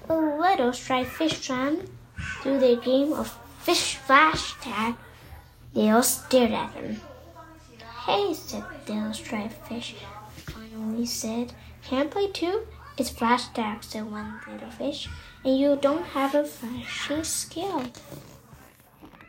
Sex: female